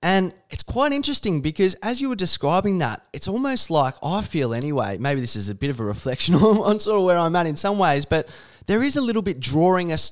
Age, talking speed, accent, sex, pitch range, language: 20-39, 245 wpm, Australian, male, 120-170 Hz, English